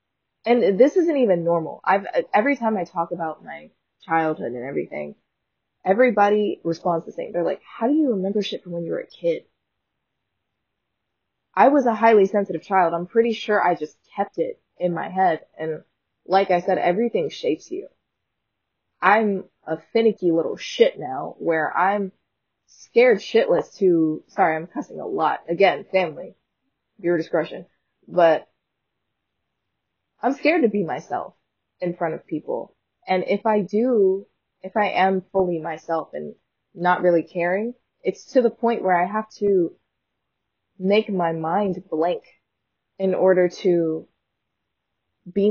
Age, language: 20-39, English